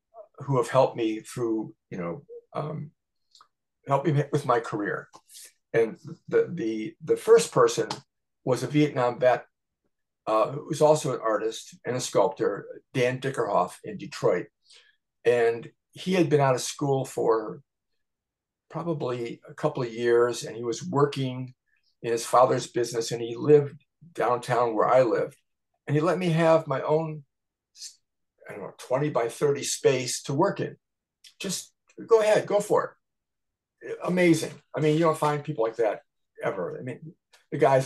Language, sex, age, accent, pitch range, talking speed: English, male, 50-69, American, 125-180 Hz, 155 wpm